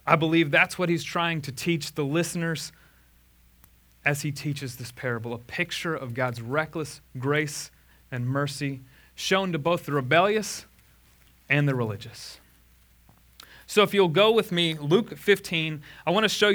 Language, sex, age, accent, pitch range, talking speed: English, male, 30-49, American, 115-165 Hz, 155 wpm